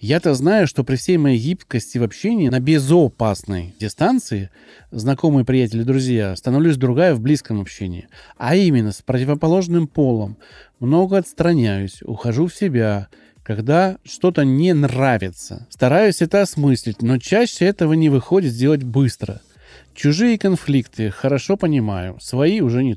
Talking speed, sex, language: 135 wpm, male, Russian